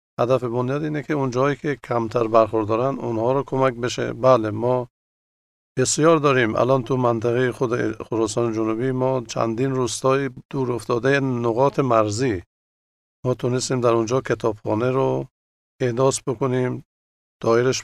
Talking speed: 130 wpm